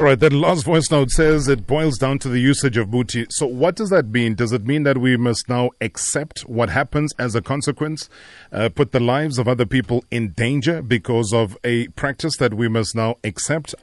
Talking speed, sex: 220 wpm, male